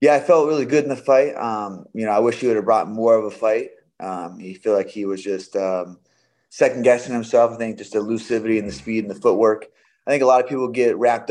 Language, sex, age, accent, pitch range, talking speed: English, male, 20-39, American, 100-120 Hz, 270 wpm